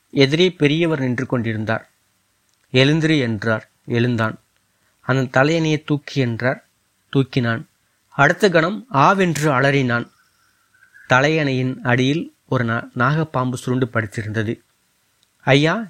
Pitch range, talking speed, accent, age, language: 120-150 Hz, 85 wpm, native, 30-49, Tamil